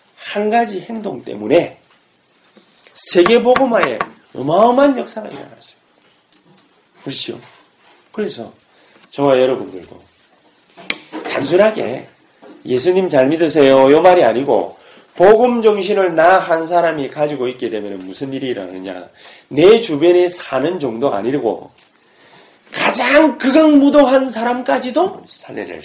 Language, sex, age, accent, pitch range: Korean, male, 30-49, native, 180-305 Hz